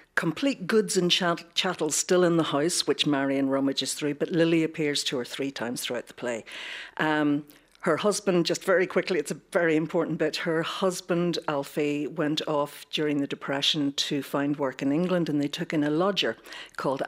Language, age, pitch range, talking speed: English, 60-79, 150-180 Hz, 185 wpm